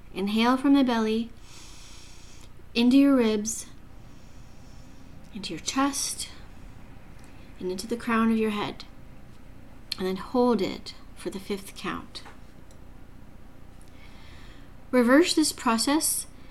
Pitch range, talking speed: 195-245 Hz, 100 wpm